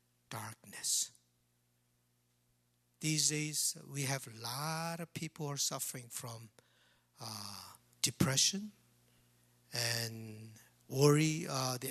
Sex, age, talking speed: male, 60-79, 95 wpm